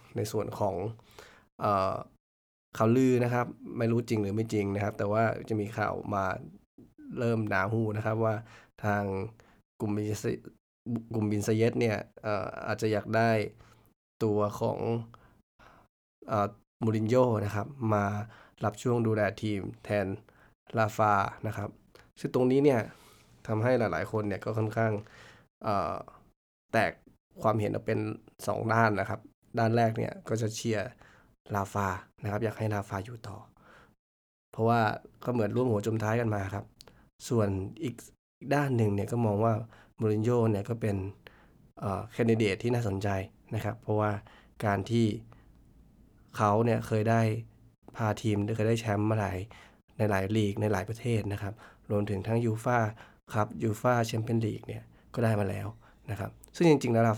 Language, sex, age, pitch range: Thai, male, 20-39, 105-115 Hz